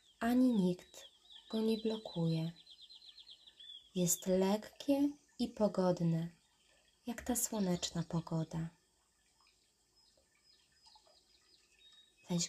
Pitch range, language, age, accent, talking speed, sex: 175-220 Hz, Polish, 20-39, native, 65 wpm, female